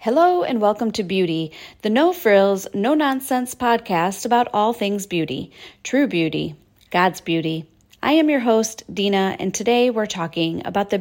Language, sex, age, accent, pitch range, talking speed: English, female, 40-59, American, 170-245 Hz, 155 wpm